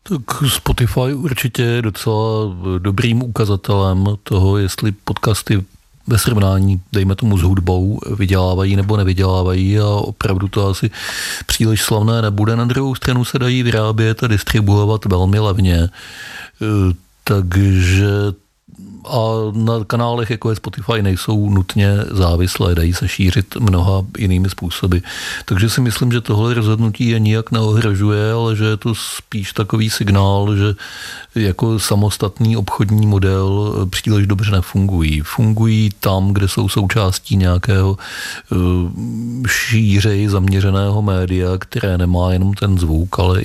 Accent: native